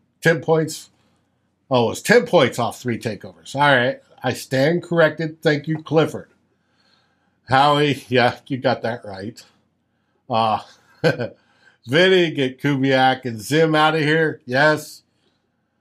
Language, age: English, 60-79